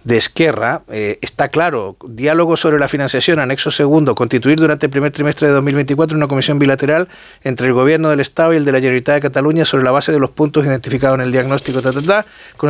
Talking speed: 220 wpm